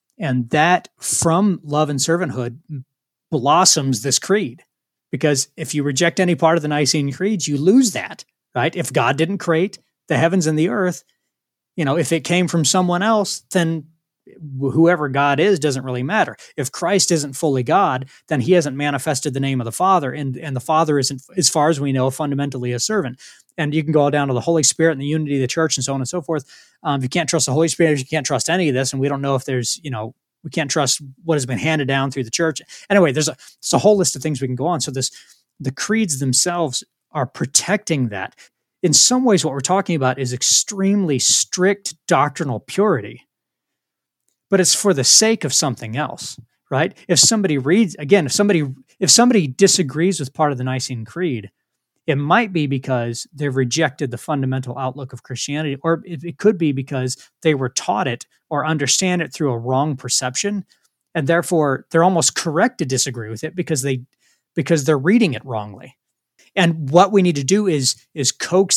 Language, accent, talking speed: English, American, 210 wpm